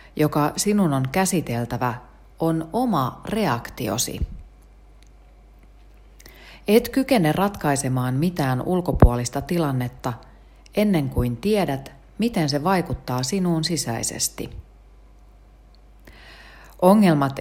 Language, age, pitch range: Finnish, 40-59, 120-175 Hz